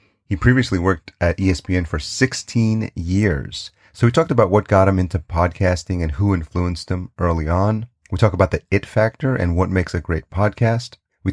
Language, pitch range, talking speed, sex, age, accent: English, 85-100 Hz, 190 wpm, male, 30-49, American